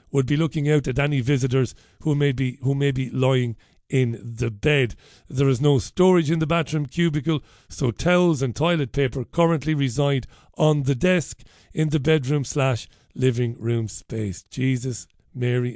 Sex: male